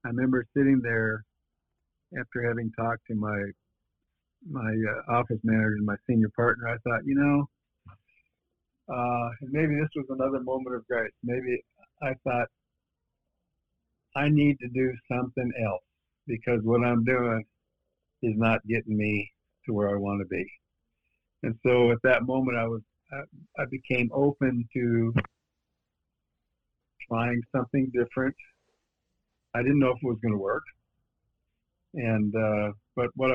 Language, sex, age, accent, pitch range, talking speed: English, male, 60-79, American, 105-125 Hz, 145 wpm